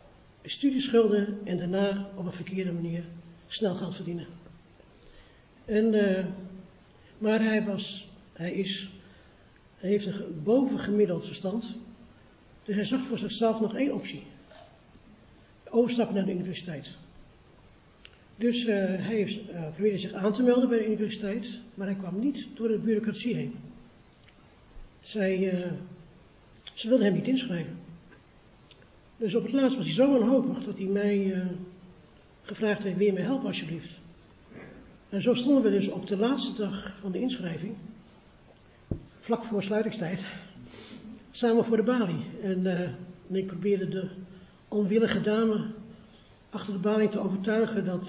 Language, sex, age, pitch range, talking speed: Dutch, male, 60-79, 185-225 Hz, 140 wpm